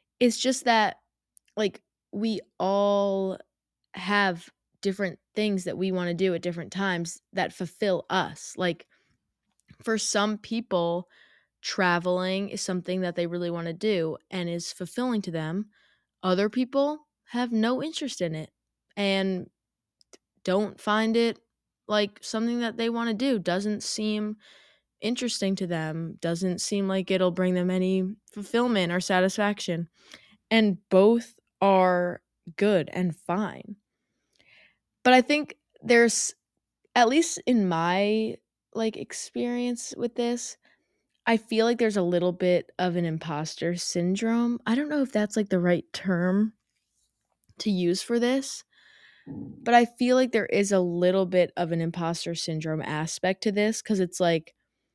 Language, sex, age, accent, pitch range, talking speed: English, female, 20-39, American, 180-225 Hz, 145 wpm